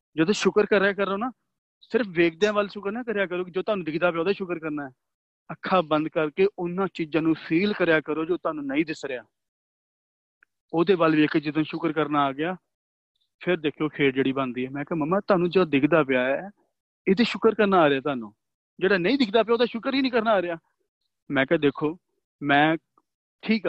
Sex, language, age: male, Punjabi, 30-49